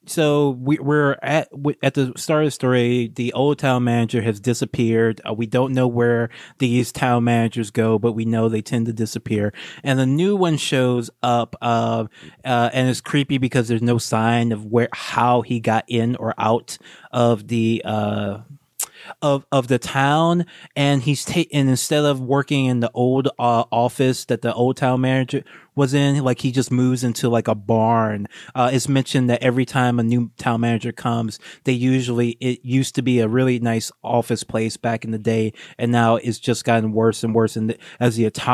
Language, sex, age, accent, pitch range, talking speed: English, male, 20-39, American, 115-140 Hz, 200 wpm